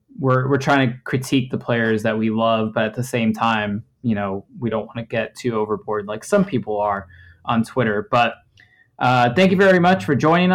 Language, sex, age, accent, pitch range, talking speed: English, male, 20-39, American, 115-135 Hz, 215 wpm